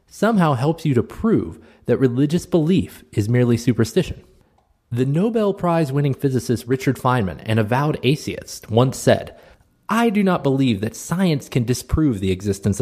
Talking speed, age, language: 150 wpm, 20-39, English